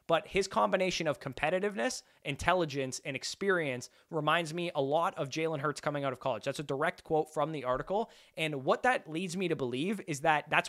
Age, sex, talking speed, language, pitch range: 20-39, male, 200 wpm, English, 140-175 Hz